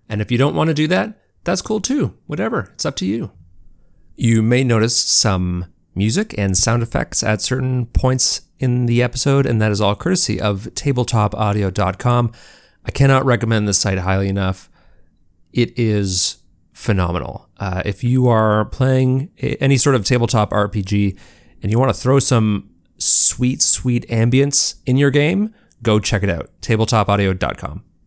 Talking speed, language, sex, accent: 160 wpm, English, male, American